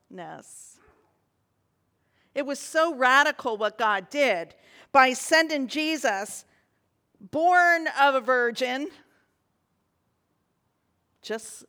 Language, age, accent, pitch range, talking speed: English, 50-69, American, 220-295 Hz, 75 wpm